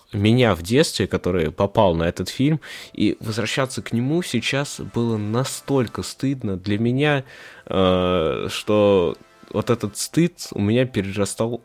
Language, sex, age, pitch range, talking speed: Russian, male, 20-39, 95-120 Hz, 130 wpm